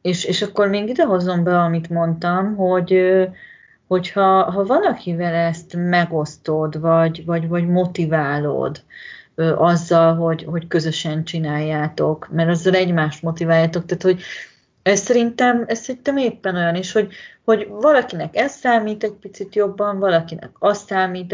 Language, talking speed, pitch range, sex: Hungarian, 135 wpm, 170-200 Hz, female